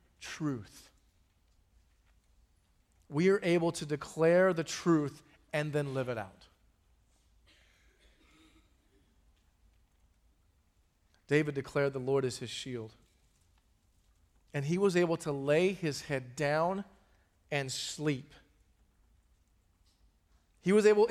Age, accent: 40-59, American